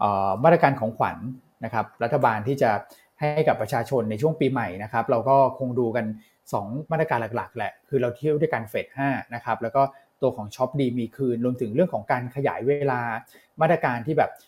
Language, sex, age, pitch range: Thai, male, 20-39, 115-145 Hz